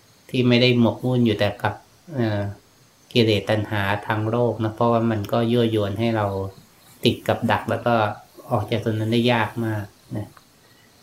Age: 20-39